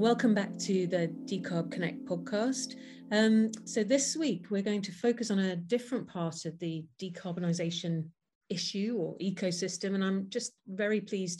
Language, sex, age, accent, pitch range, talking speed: English, female, 40-59, British, 170-200 Hz, 160 wpm